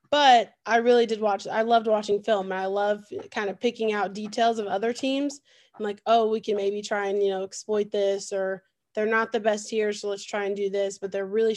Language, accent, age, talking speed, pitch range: English, American, 20-39, 245 wpm, 195-235 Hz